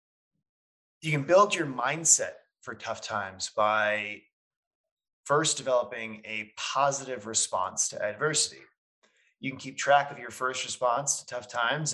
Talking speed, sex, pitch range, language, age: 135 wpm, male, 115-150 Hz, English, 20-39